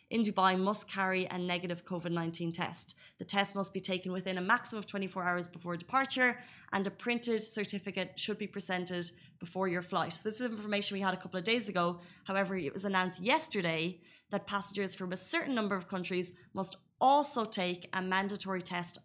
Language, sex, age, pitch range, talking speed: Arabic, female, 20-39, 180-200 Hz, 190 wpm